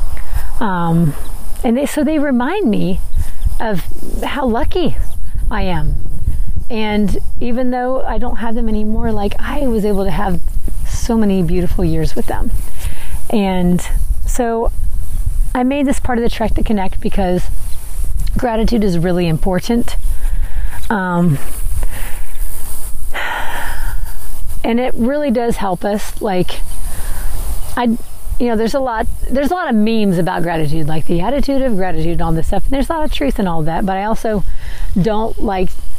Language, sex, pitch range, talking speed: English, female, 175-240 Hz, 155 wpm